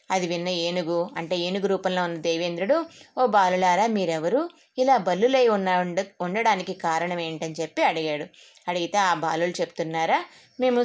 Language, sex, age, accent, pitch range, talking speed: Telugu, female, 20-39, native, 175-225 Hz, 140 wpm